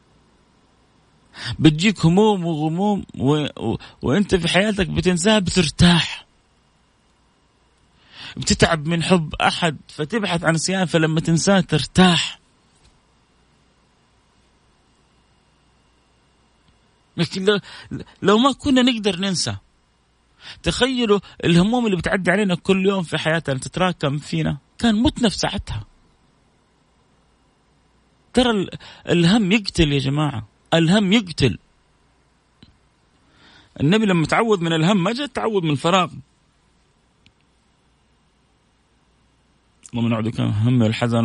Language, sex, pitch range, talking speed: Arabic, male, 125-190 Hz, 95 wpm